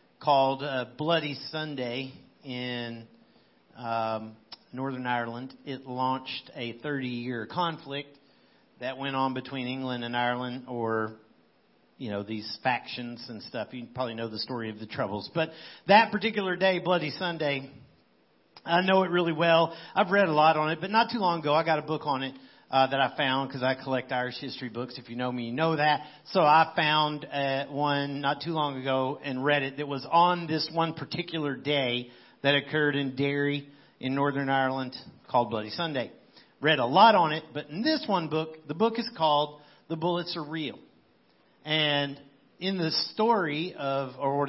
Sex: male